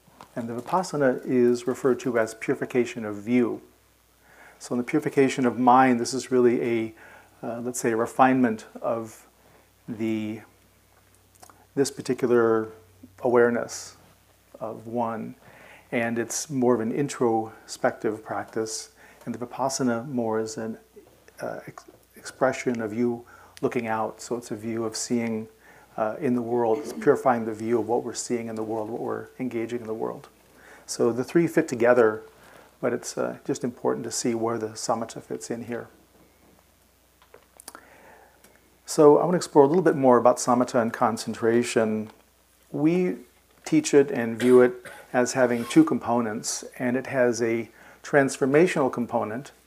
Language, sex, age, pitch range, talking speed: English, male, 40-59, 110-130 Hz, 150 wpm